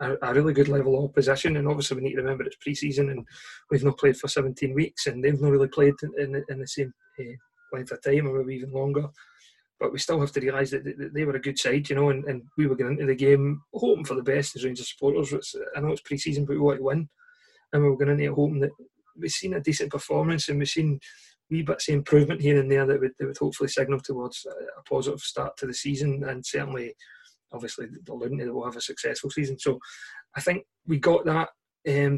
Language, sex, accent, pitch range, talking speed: English, male, British, 135-145 Hz, 245 wpm